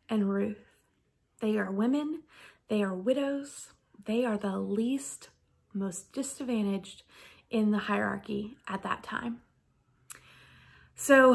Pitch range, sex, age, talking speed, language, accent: 205-265 Hz, female, 30-49, 110 wpm, English, American